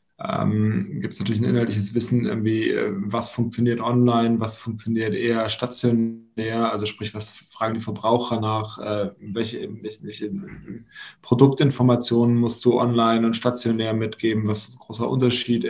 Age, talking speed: 20-39, 140 wpm